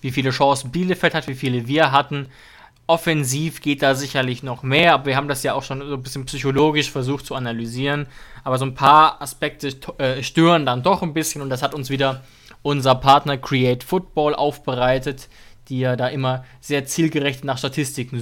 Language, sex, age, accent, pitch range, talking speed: German, male, 20-39, German, 130-155 Hz, 190 wpm